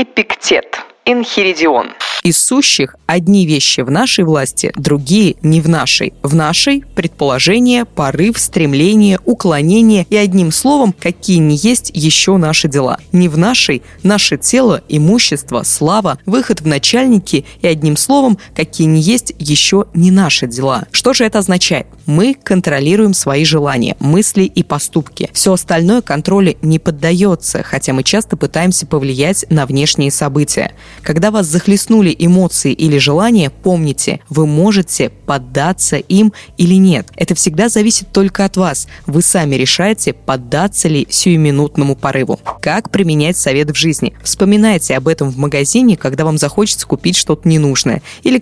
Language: Russian